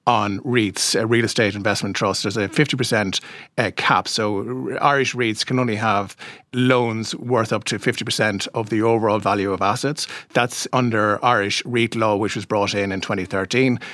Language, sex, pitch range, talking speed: English, male, 100-120 Hz, 170 wpm